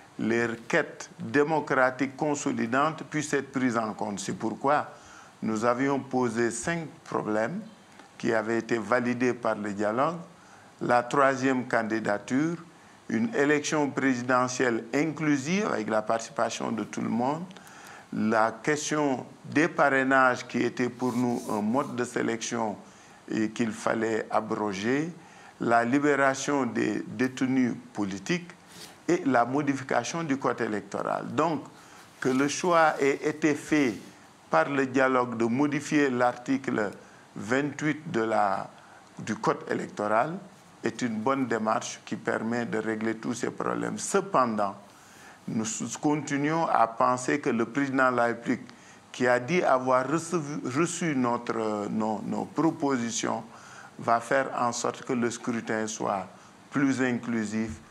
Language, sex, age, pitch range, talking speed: French, male, 50-69, 115-145 Hz, 130 wpm